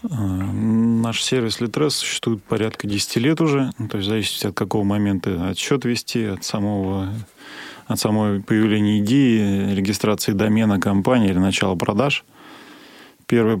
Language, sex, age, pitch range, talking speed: Russian, male, 20-39, 100-115 Hz, 130 wpm